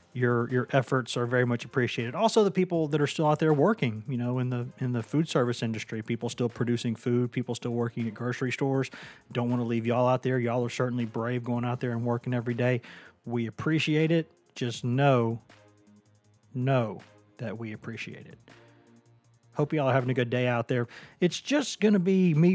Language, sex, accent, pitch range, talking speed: English, male, American, 115-140 Hz, 210 wpm